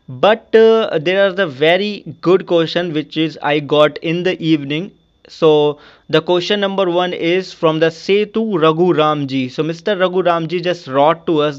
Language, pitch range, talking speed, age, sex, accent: English, 160-195 Hz, 175 wpm, 20-39, male, Indian